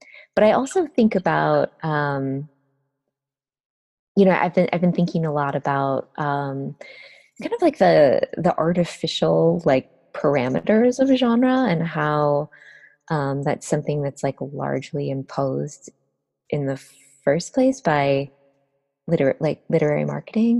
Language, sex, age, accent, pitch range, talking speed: English, female, 20-39, American, 140-175 Hz, 135 wpm